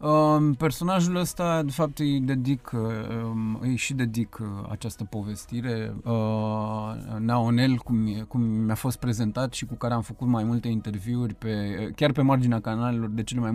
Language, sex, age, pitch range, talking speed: Romanian, male, 20-39, 115-140 Hz, 150 wpm